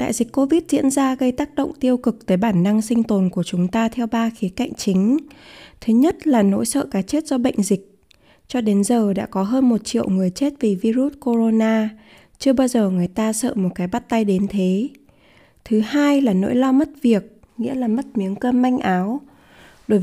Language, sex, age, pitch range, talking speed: Vietnamese, female, 20-39, 200-265 Hz, 220 wpm